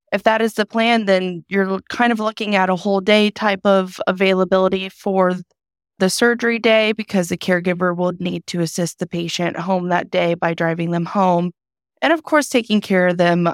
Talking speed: 195 wpm